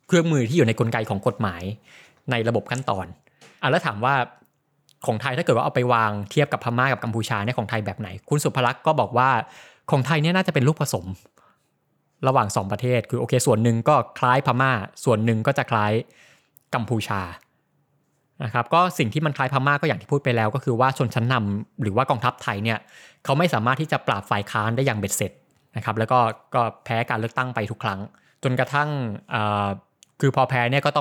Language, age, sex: Thai, 20-39, male